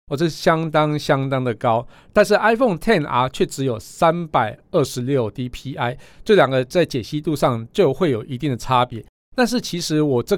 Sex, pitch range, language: male, 125-170 Hz, Chinese